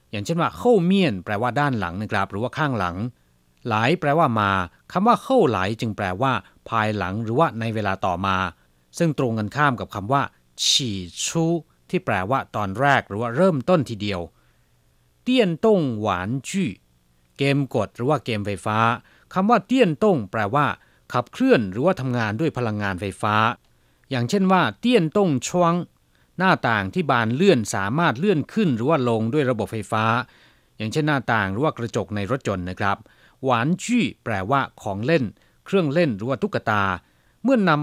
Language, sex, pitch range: Chinese, male, 105-155 Hz